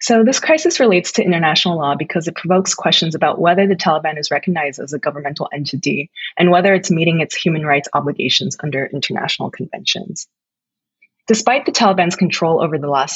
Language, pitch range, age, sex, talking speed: English, 150-200 Hz, 20-39, female, 180 wpm